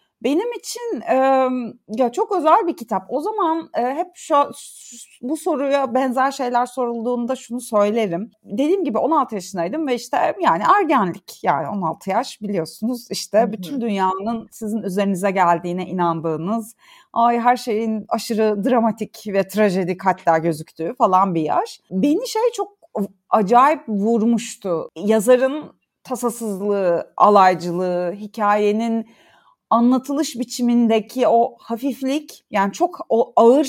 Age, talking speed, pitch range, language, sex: 40-59, 120 wpm, 200-285 Hz, Turkish, female